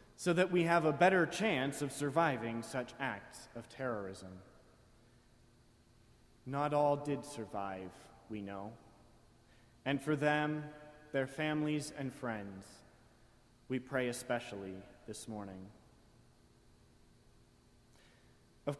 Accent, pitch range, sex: American, 115-155 Hz, male